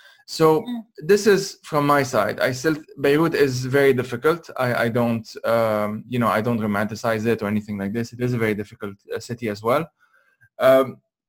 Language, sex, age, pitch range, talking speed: English, male, 20-39, 115-140 Hz, 185 wpm